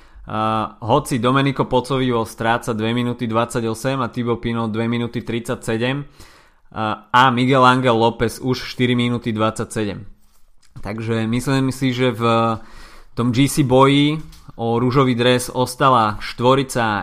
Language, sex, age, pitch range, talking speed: Slovak, male, 20-39, 110-125 Hz, 125 wpm